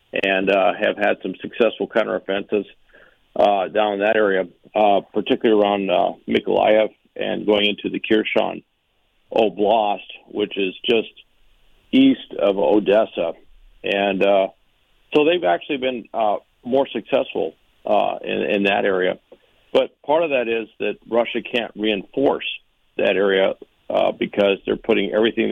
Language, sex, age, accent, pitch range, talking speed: English, male, 50-69, American, 100-120 Hz, 140 wpm